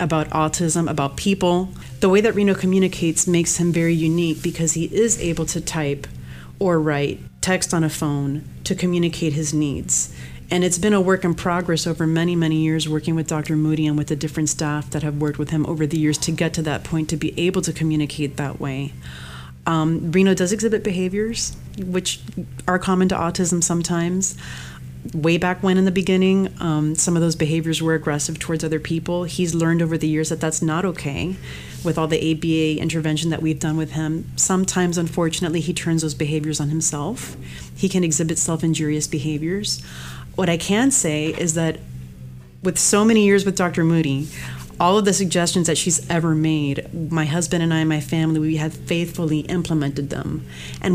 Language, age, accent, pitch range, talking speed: English, 30-49, American, 150-180 Hz, 190 wpm